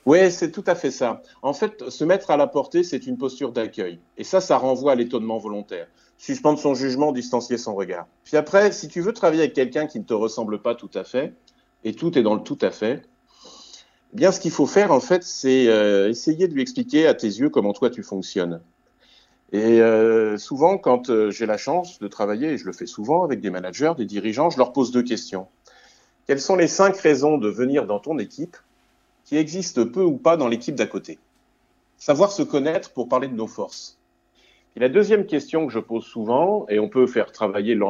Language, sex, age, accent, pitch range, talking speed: French, male, 40-59, French, 115-175 Hz, 215 wpm